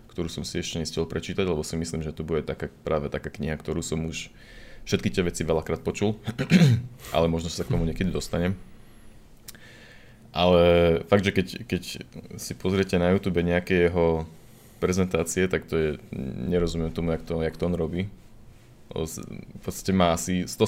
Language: Slovak